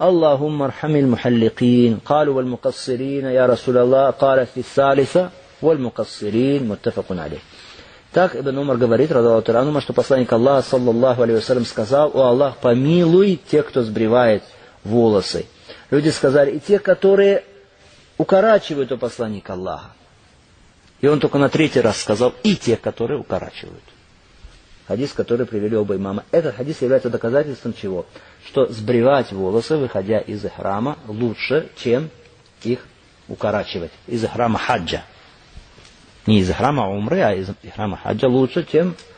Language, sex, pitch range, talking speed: Russian, male, 115-140 Hz, 130 wpm